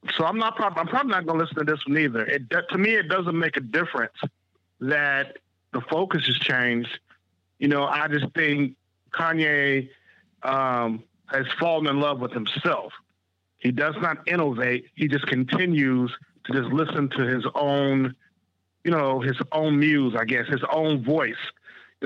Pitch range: 130-170 Hz